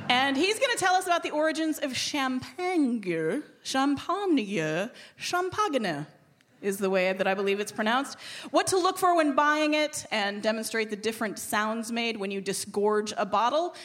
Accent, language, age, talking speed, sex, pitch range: American, English, 30-49, 170 wpm, female, 205-295 Hz